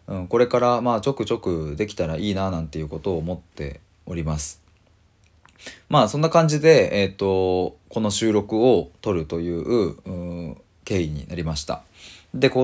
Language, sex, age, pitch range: Japanese, male, 20-39, 85-110 Hz